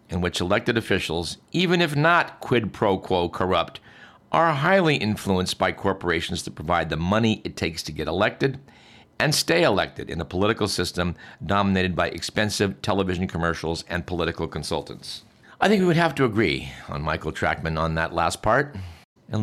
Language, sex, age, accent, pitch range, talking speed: English, male, 50-69, American, 85-110 Hz, 170 wpm